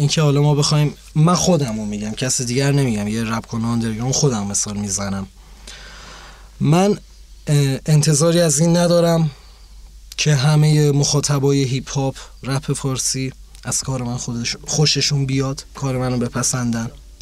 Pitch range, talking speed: 120-155 Hz, 140 wpm